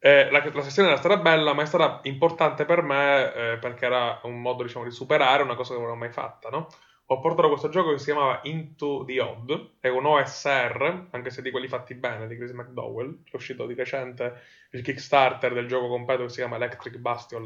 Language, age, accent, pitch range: Italian, 20-39, native, 125-150 Hz